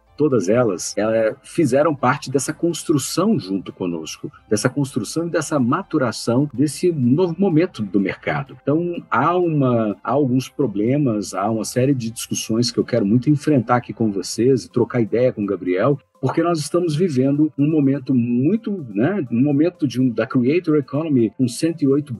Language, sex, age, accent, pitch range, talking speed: Portuguese, male, 50-69, Brazilian, 115-150 Hz, 165 wpm